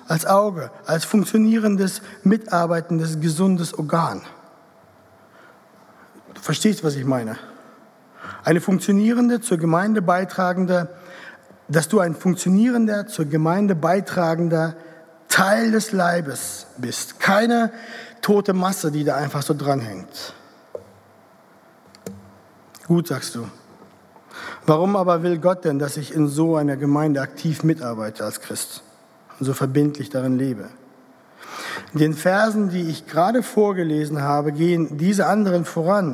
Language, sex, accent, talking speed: German, male, German, 115 wpm